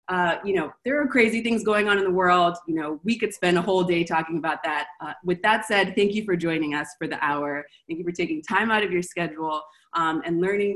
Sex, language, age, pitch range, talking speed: female, English, 20-39, 170-210 Hz, 260 wpm